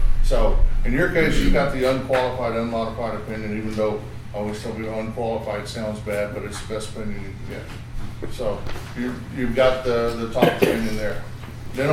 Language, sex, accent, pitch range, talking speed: English, male, American, 105-120 Hz, 165 wpm